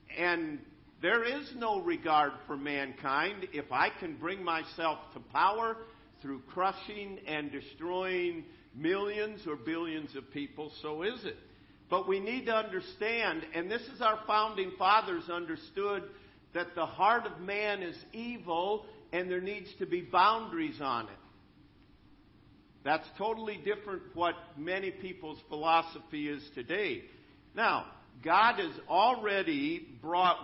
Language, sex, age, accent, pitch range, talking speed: English, male, 50-69, American, 155-210 Hz, 135 wpm